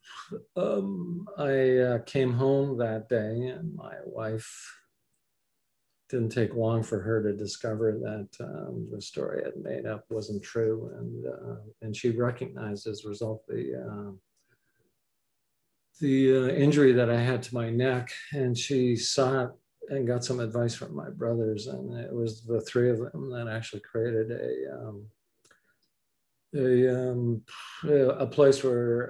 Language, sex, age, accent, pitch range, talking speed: English, male, 50-69, American, 110-130 Hz, 150 wpm